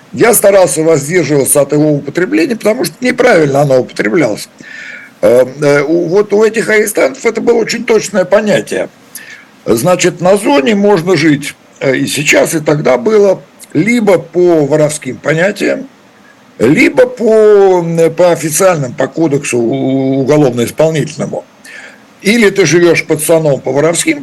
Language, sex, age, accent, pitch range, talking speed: Russian, male, 60-79, native, 150-205 Hz, 115 wpm